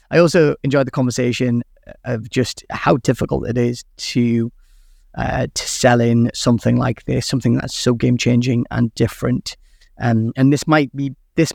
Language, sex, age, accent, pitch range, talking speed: English, male, 30-49, British, 115-130 Hz, 160 wpm